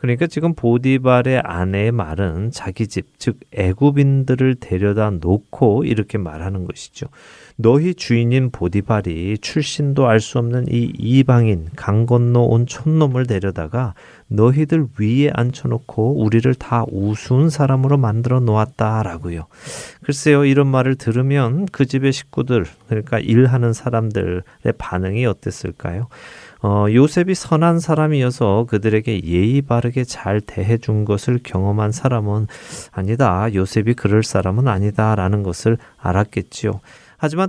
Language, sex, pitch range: Korean, male, 105-135 Hz